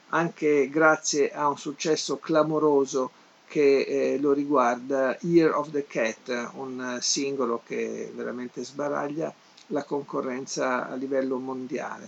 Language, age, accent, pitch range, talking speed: Italian, 50-69, native, 130-155 Hz, 120 wpm